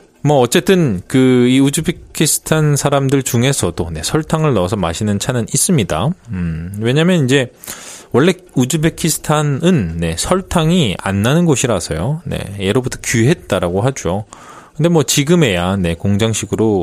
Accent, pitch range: native, 95-145 Hz